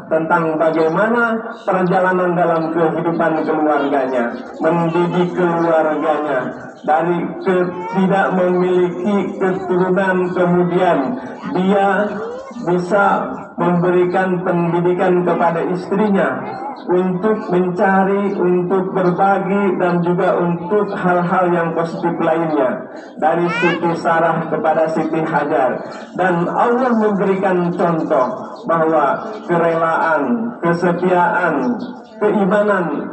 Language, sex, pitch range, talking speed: Indonesian, male, 165-200 Hz, 80 wpm